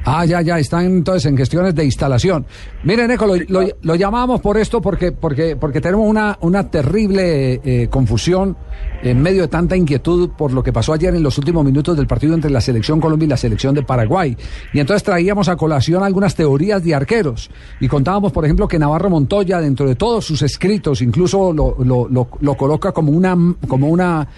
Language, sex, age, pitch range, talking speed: Spanish, male, 50-69, 145-200 Hz, 200 wpm